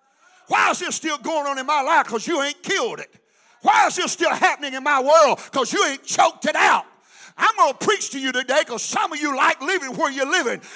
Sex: male